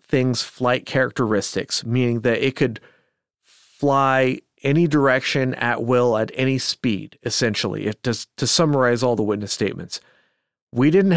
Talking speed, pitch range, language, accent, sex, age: 140 wpm, 120-150 Hz, English, American, male, 40-59